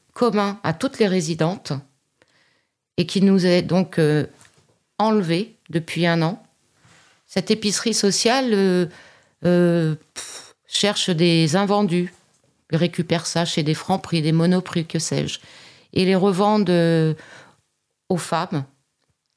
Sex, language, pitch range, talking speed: female, French, 160-205 Hz, 125 wpm